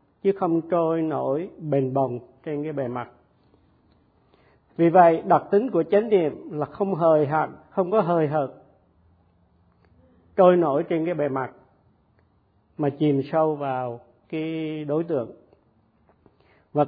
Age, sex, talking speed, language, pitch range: 50-69, male, 140 wpm, Vietnamese, 130-175 Hz